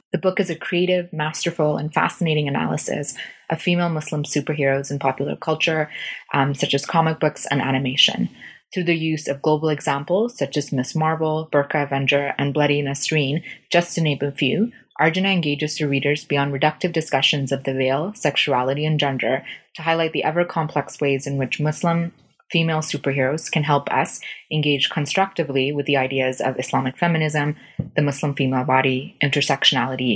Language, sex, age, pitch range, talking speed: English, female, 20-39, 140-160 Hz, 165 wpm